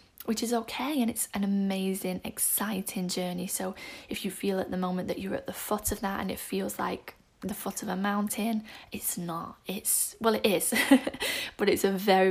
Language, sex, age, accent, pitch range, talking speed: English, female, 10-29, British, 185-220 Hz, 205 wpm